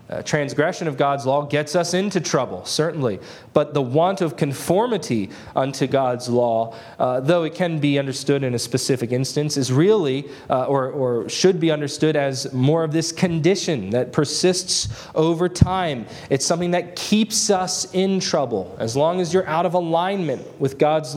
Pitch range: 130-175 Hz